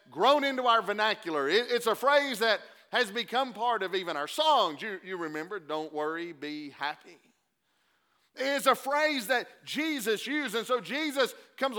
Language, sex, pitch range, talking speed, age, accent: English, male, 185-255 Hz, 165 wpm, 40-59, American